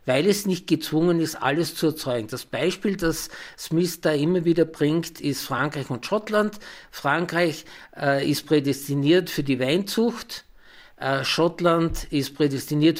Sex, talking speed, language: male, 140 wpm, German